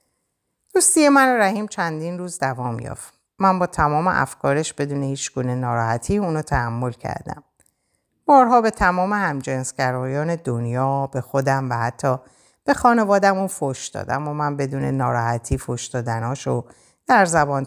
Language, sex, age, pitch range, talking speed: Persian, female, 50-69, 125-185 Hz, 135 wpm